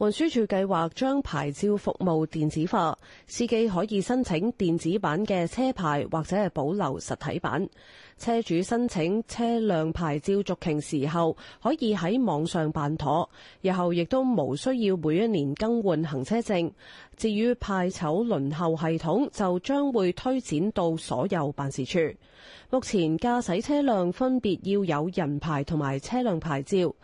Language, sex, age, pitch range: Chinese, female, 30-49, 160-220 Hz